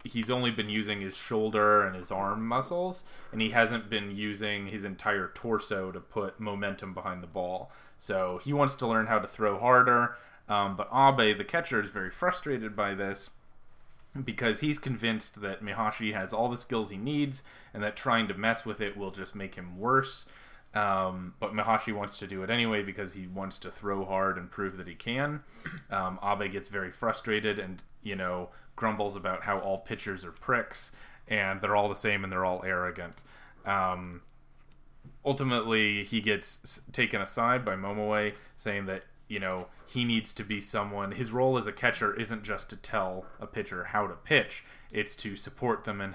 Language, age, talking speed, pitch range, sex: English, 20-39, 190 wpm, 95-115 Hz, male